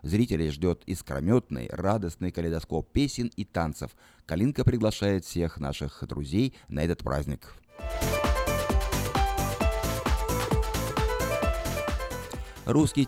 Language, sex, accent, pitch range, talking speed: Russian, male, native, 80-105 Hz, 80 wpm